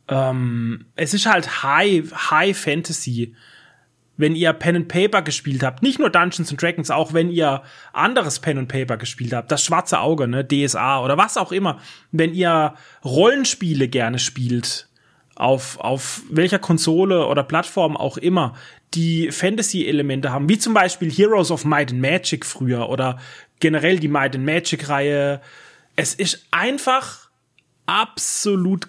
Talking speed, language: 150 wpm, German